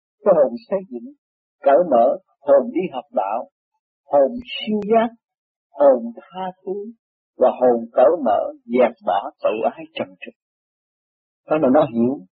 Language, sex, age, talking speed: Vietnamese, male, 50-69, 145 wpm